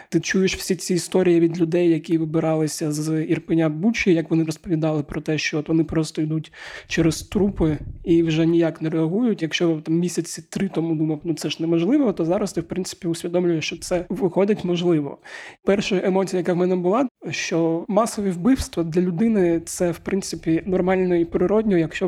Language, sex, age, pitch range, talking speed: Ukrainian, male, 20-39, 165-190 Hz, 185 wpm